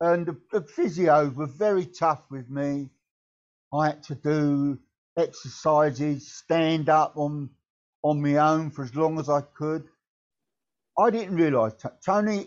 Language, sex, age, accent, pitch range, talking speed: English, male, 50-69, British, 135-170 Hz, 140 wpm